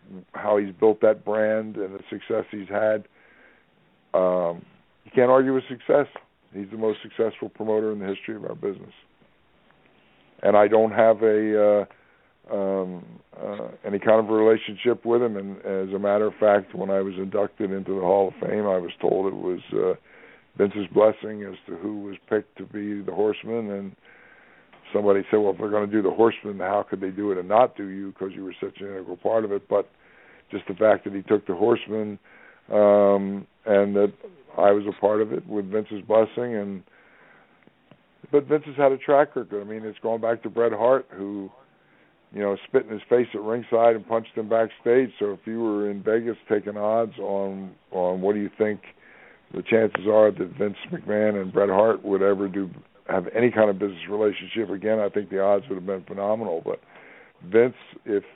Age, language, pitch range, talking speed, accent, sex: 60-79, English, 100-110 Hz, 200 wpm, American, male